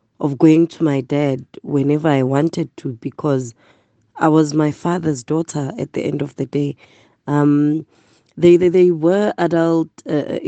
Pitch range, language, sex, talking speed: 140-160 Hz, English, female, 160 wpm